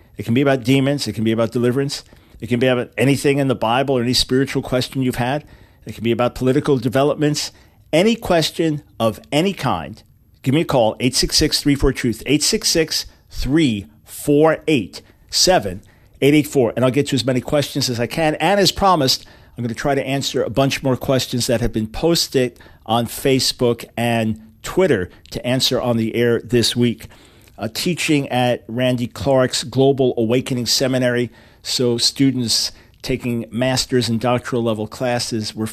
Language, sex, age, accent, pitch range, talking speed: English, male, 50-69, American, 115-135 Hz, 160 wpm